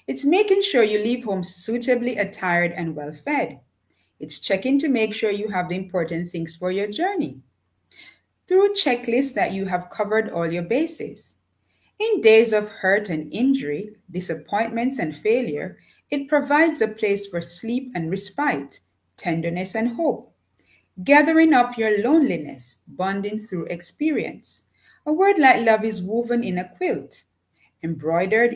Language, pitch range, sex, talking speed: English, 175-260 Hz, female, 145 wpm